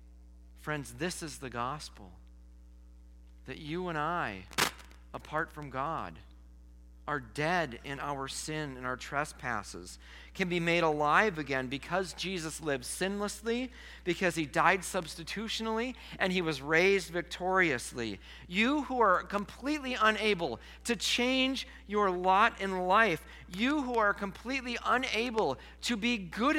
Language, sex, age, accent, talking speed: English, male, 40-59, American, 130 wpm